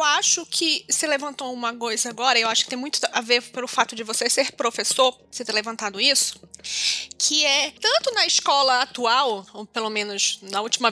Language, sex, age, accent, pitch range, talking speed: Portuguese, female, 20-39, Brazilian, 230-325 Hz, 200 wpm